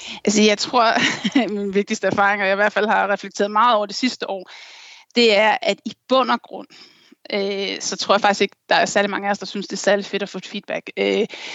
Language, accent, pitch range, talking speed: Danish, native, 205-250 Hz, 250 wpm